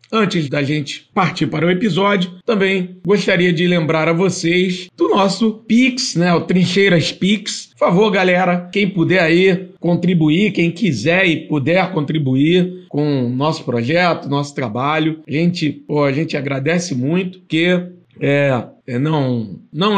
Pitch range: 145-180 Hz